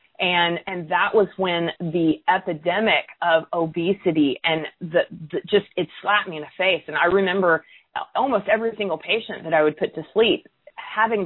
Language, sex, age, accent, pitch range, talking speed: English, female, 30-49, American, 170-220 Hz, 180 wpm